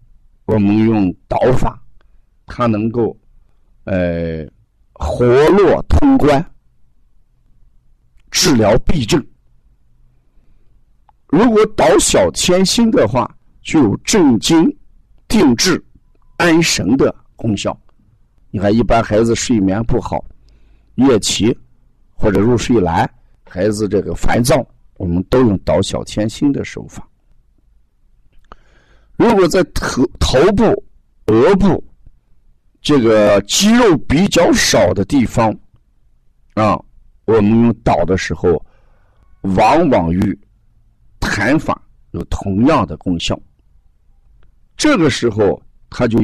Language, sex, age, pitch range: Chinese, male, 50-69, 75-115 Hz